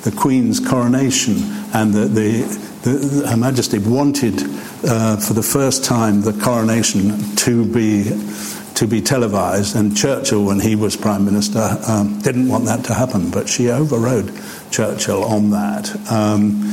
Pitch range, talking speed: 105-125 Hz, 150 wpm